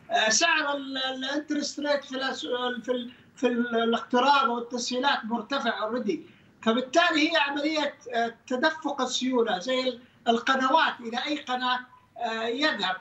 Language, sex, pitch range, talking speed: Arabic, male, 235-295 Hz, 90 wpm